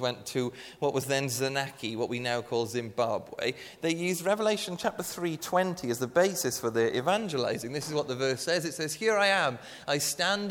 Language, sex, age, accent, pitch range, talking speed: English, male, 30-49, British, 120-170 Hz, 200 wpm